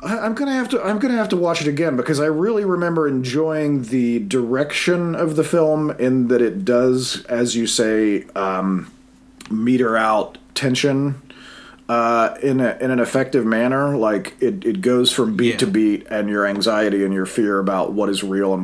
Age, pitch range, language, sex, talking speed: 40-59, 110-155 Hz, English, male, 185 wpm